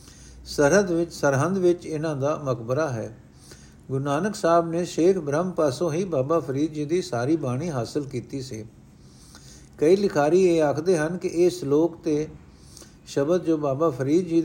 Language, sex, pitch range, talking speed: Punjabi, male, 130-165 Hz, 160 wpm